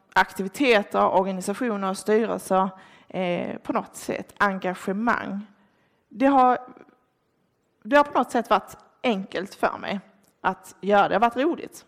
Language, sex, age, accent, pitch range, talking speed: Swedish, female, 20-39, native, 195-255 Hz, 135 wpm